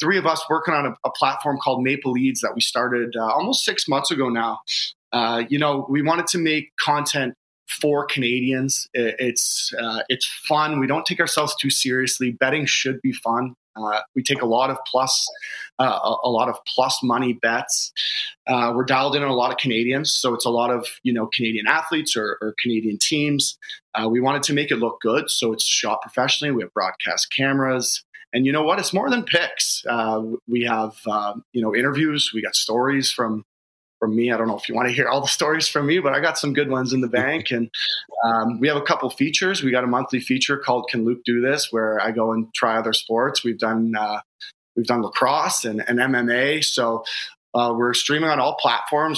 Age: 30-49